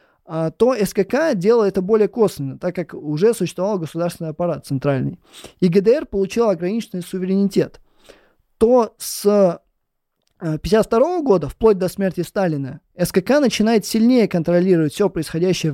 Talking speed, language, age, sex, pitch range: 120 wpm, Russian, 20-39, male, 170-215 Hz